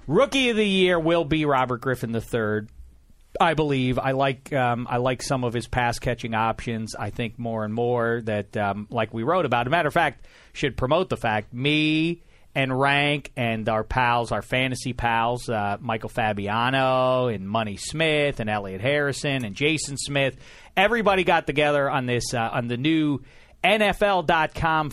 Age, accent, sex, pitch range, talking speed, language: 40-59, American, male, 115-160 Hz, 175 wpm, English